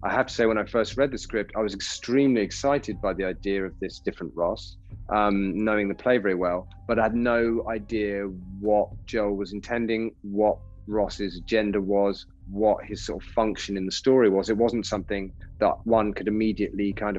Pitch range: 95-115 Hz